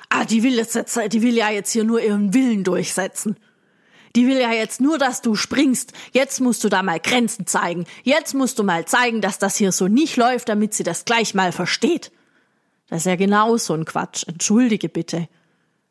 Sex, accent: female, German